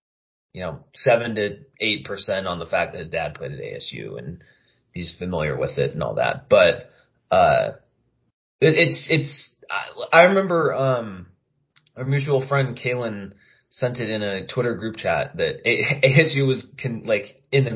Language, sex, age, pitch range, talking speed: English, male, 20-39, 100-135 Hz, 175 wpm